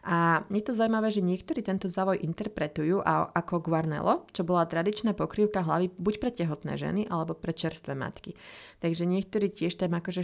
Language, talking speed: Slovak, 170 wpm